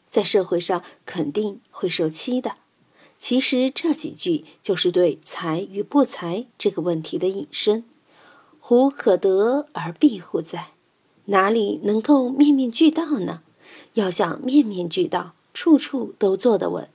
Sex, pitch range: female, 185-275 Hz